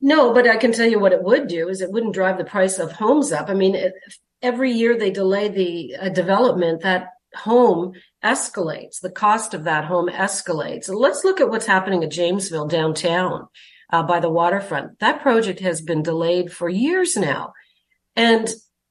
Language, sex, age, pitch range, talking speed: English, female, 50-69, 180-245 Hz, 185 wpm